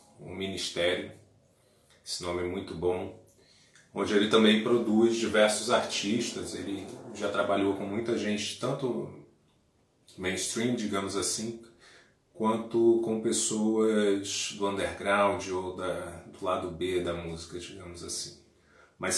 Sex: male